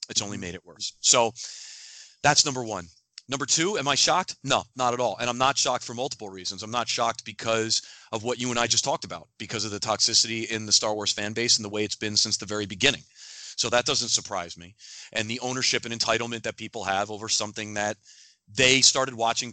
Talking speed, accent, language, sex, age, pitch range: 230 wpm, American, English, male, 30-49, 110-140 Hz